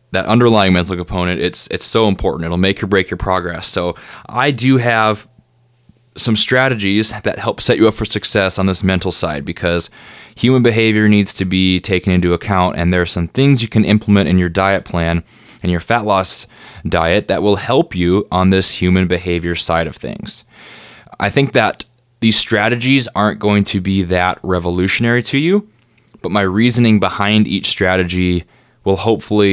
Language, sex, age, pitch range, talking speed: English, male, 20-39, 90-110 Hz, 180 wpm